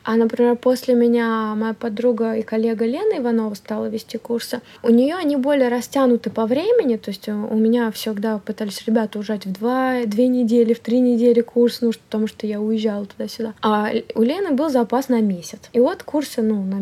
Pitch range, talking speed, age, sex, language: 215-240 Hz, 190 wpm, 20-39, female, Russian